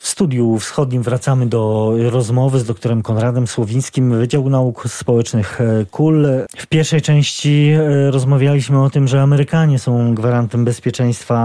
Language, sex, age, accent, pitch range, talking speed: Polish, male, 40-59, native, 115-135 Hz, 130 wpm